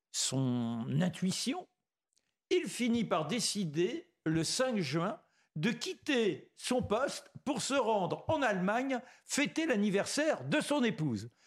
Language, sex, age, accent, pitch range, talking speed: French, male, 60-79, French, 175-265 Hz, 120 wpm